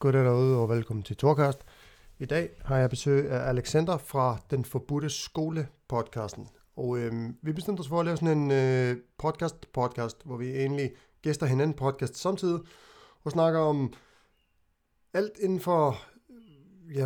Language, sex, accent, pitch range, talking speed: Danish, male, native, 130-165 Hz, 150 wpm